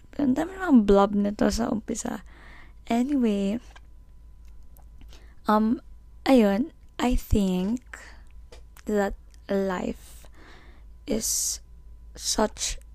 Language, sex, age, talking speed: Filipino, female, 20-39, 50 wpm